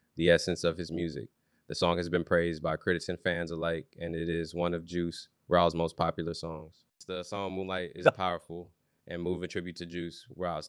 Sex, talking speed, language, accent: male, 200 wpm, English, American